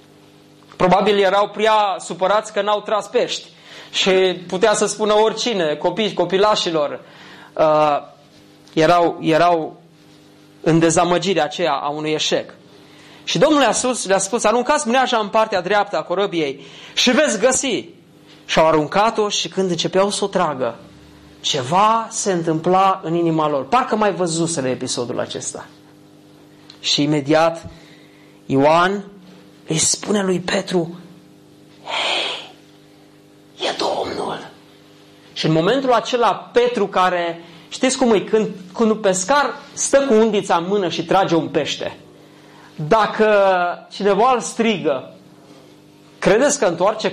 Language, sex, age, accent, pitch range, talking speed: Romanian, male, 30-49, native, 165-220 Hz, 125 wpm